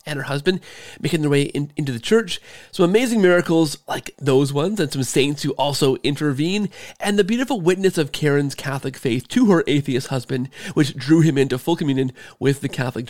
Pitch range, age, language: 135-190 Hz, 30-49, English